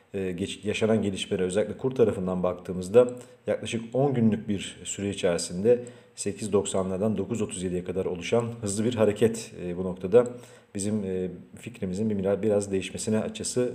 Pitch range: 95-115 Hz